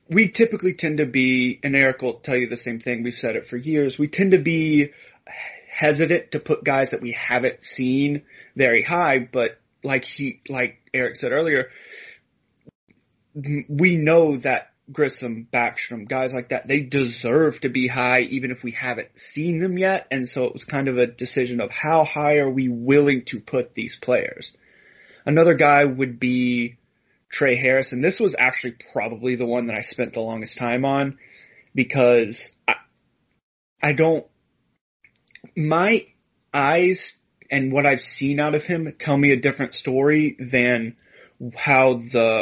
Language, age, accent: English, 20-39, American